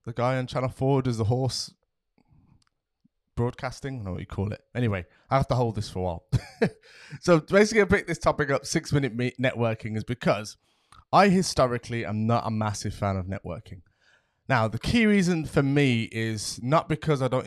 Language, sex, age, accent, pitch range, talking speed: English, male, 20-39, British, 105-135 Hz, 190 wpm